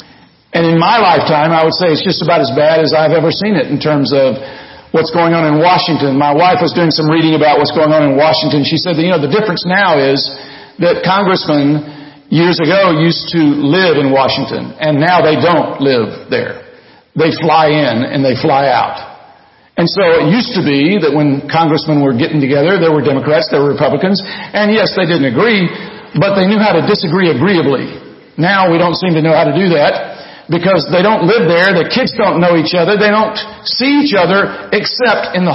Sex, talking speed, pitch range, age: male, 215 wpm, 150-190 Hz, 50-69